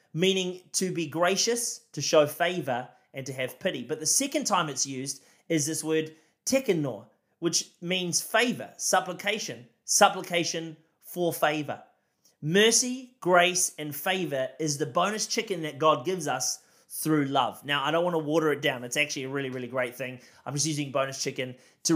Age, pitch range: 30-49, 150-210 Hz